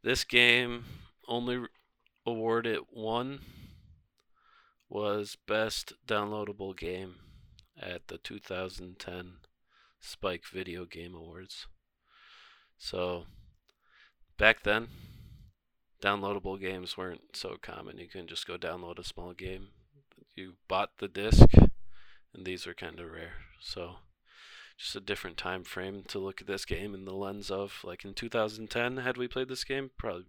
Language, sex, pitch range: English, male, 90-110 Hz